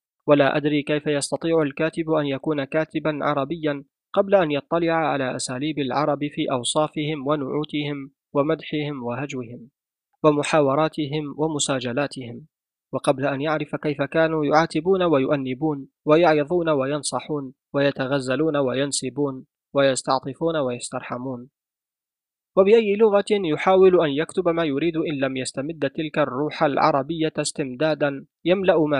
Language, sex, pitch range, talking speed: Arabic, male, 140-160 Hz, 105 wpm